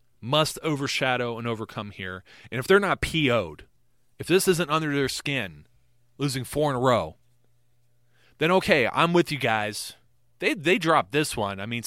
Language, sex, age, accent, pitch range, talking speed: English, male, 30-49, American, 120-155 Hz, 170 wpm